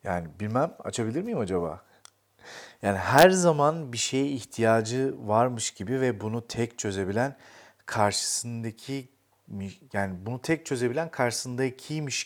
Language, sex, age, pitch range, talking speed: Turkish, male, 40-59, 105-140 Hz, 115 wpm